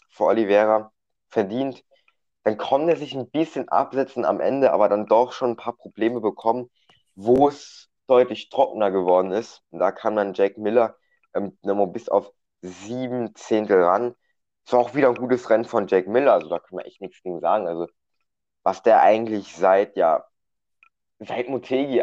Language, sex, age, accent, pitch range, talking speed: German, male, 20-39, German, 100-125 Hz, 175 wpm